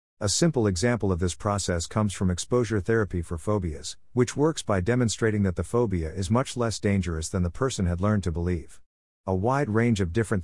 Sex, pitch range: male, 90-115 Hz